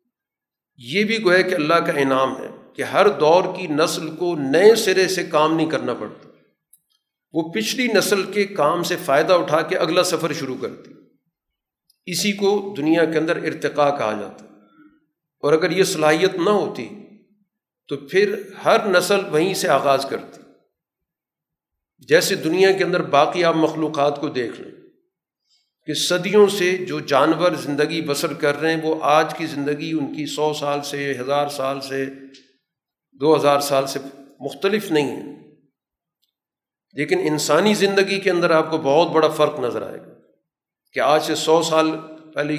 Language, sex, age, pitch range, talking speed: Urdu, male, 50-69, 145-185 Hz, 165 wpm